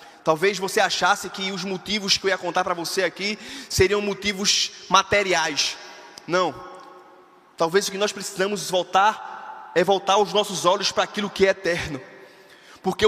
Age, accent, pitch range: 20-39, Brazilian, 180-235 Hz